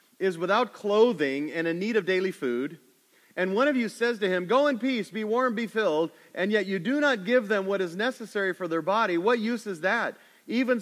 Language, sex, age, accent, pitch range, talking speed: English, male, 40-59, American, 145-215 Hz, 225 wpm